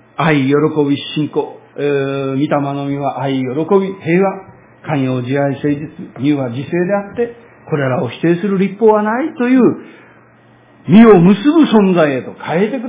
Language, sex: Japanese, male